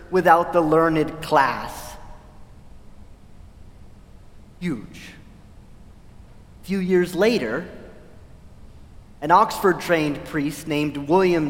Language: English